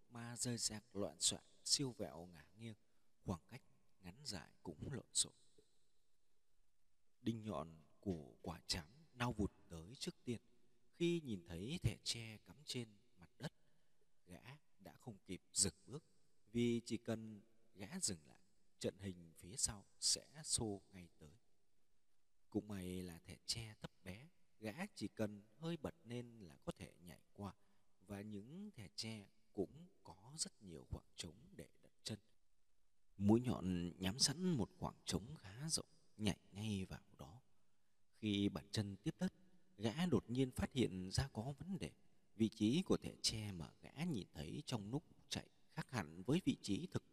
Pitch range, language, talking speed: 95-130 Hz, Vietnamese, 165 wpm